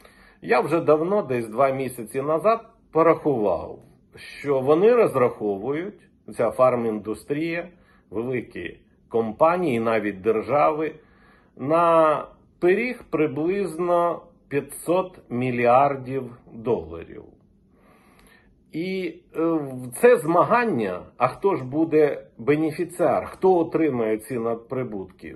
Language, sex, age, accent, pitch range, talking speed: Ukrainian, male, 50-69, native, 125-180 Hz, 85 wpm